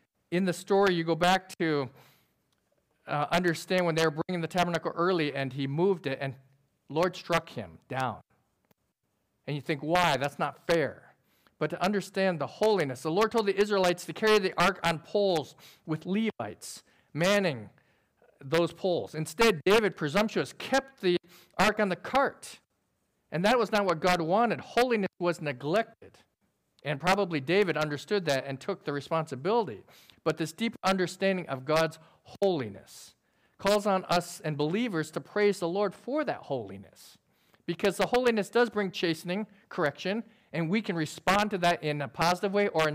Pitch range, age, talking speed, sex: 145-195 Hz, 50-69, 170 wpm, male